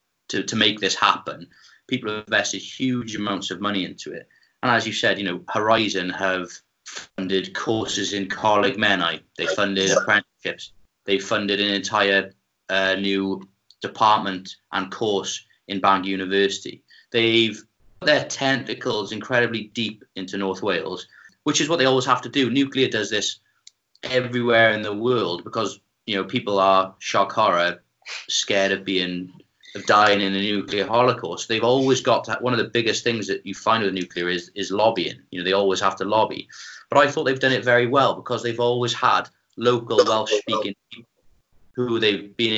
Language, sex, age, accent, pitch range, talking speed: English, male, 30-49, British, 95-120 Hz, 175 wpm